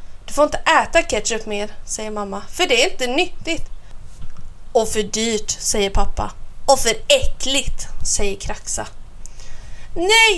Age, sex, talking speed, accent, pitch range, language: 30-49, female, 140 wpm, native, 210-285 Hz, Swedish